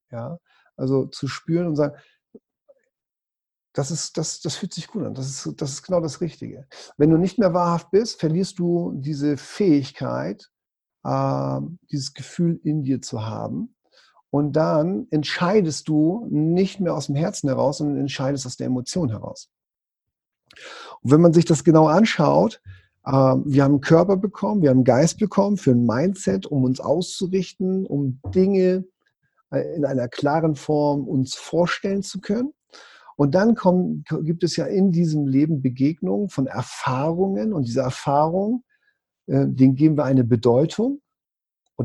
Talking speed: 155 wpm